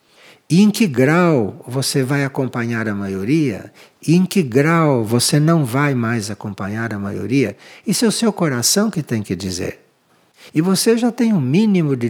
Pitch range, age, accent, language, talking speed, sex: 125-195 Hz, 60-79, Brazilian, Portuguese, 180 wpm, male